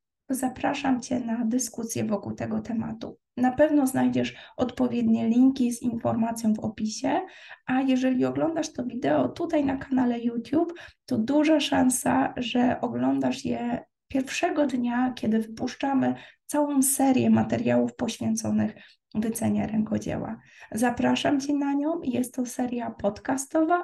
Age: 20-39